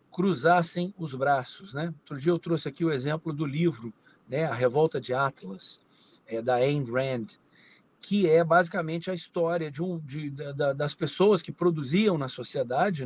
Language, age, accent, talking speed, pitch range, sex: Portuguese, 50-69, Brazilian, 170 wpm, 145-190 Hz, male